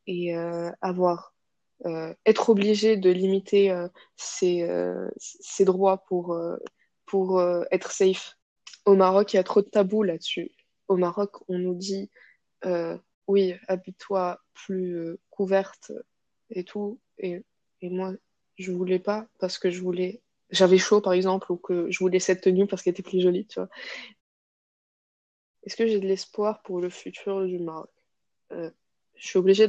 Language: English